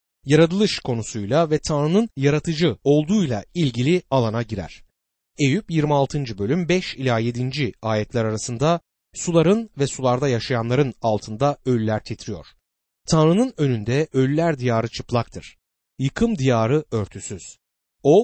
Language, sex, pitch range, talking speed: Turkish, male, 110-165 Hz, 110 wpm